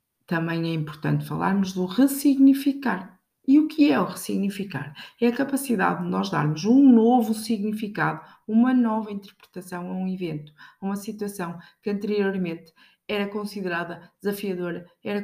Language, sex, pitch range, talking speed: Portuguese, female, 170-215 Hz, 140 wpm